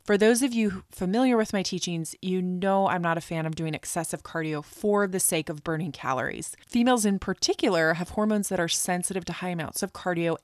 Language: English